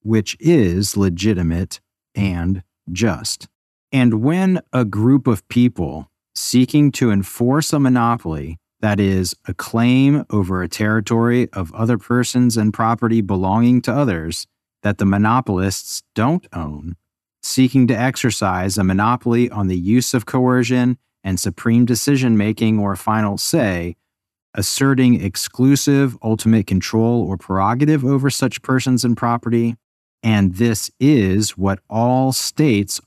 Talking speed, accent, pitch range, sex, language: 125 wpm, American, 95-125 Hz, male, English